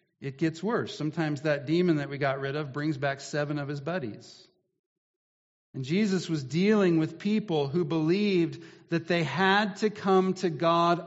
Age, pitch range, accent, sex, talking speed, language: 50-69, 170-215 Hz, American, male, 175 wpm, English